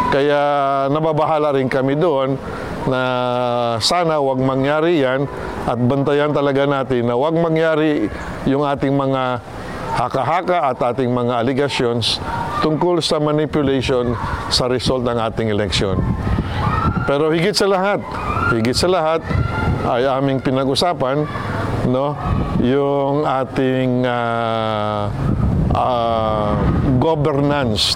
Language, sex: Filipino, male